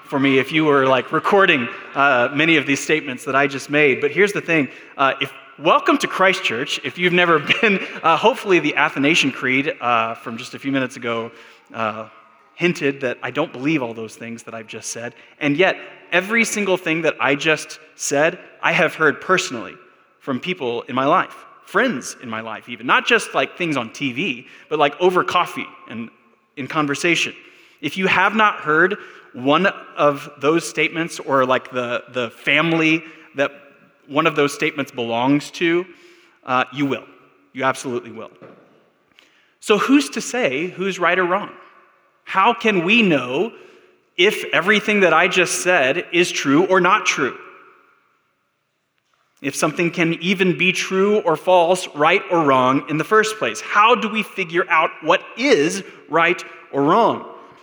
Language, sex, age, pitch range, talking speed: English, male, 20-39, 135-190 Hz, 170 wpm